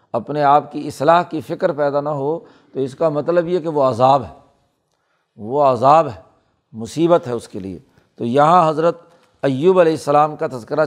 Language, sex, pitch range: Urdu, male, 140-165 Hz